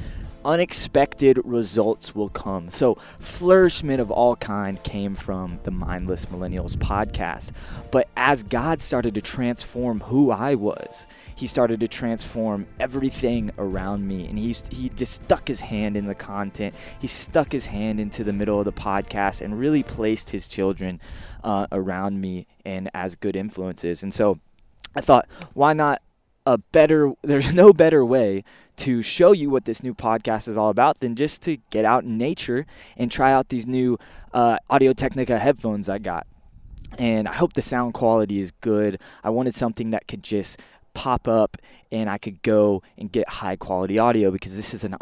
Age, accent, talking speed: 20-39, American, 175 wpm